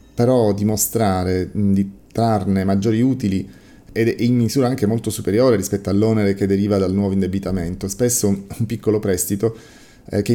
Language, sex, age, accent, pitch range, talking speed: Italian, male, 30-49, native, 95-110 Hz, 155 wpm